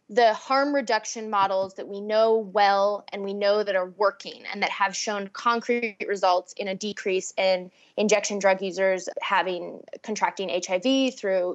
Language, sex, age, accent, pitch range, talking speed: English, female, 20-39, American, 190-230 Hz, 160 wpm